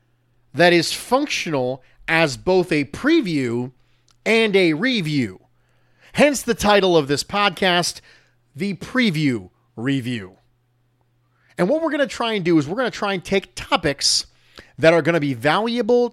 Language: English